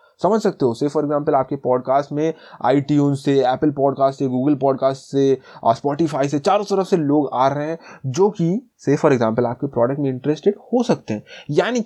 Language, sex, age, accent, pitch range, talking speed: Hindi, male, 20-39, native, 130-160 Hz, 195 wpm